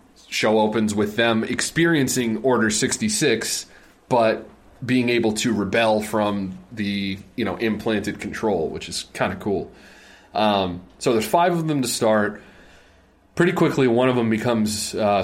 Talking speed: 150 wpm